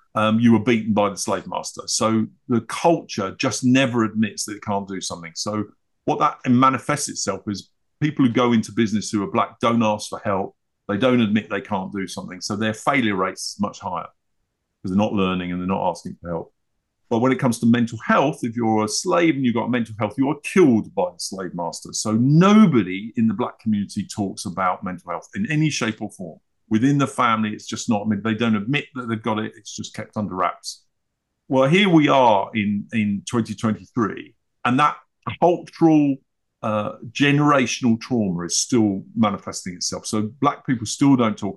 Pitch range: 100-130 Hz